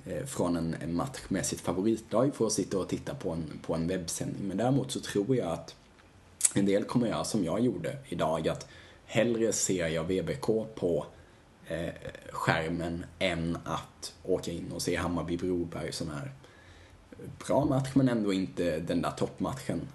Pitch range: 85-110 Hz